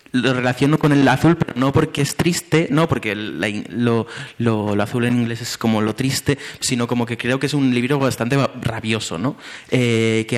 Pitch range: 115-135 Hz